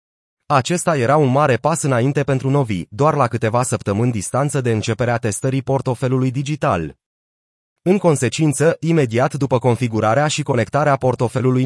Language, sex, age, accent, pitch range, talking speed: Romanian, male, 30-49, native, 115-145 Hz, 135 wpm